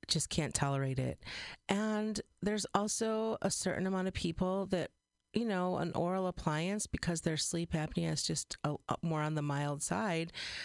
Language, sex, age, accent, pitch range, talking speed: English, female, 40-59, American, 145-180 Hz, 165 wpm